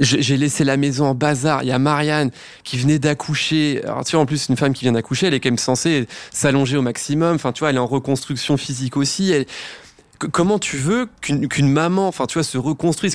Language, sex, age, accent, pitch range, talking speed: French, male, 20-39, French, 130-160 Hz, 235 wpm